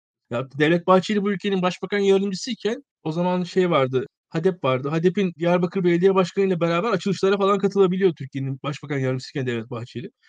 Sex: male